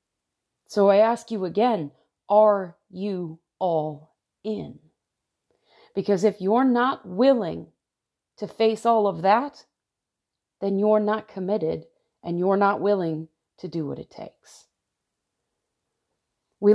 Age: 30-49